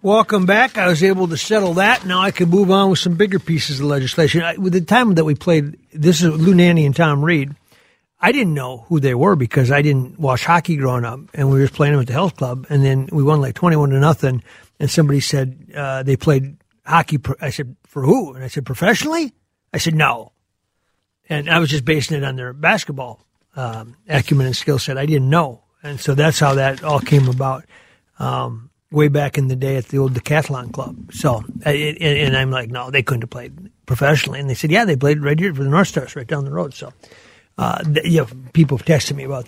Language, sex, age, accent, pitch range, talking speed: English, male, 50-69, American, 130-170 Hz, 235 wpm